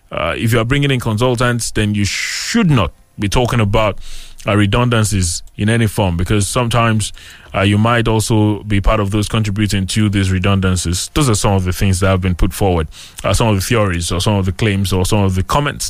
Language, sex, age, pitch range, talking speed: English, male, 20-39, 100-120 Hz, 225 wpm